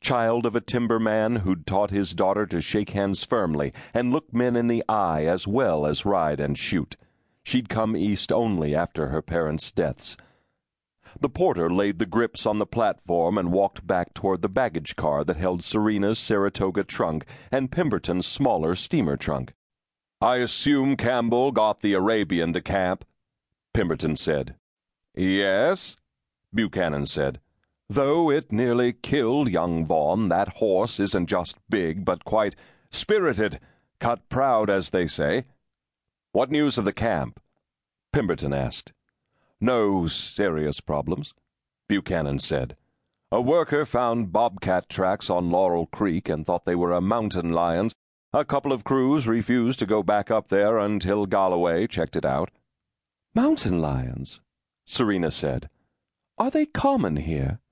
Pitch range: 85-120 Hz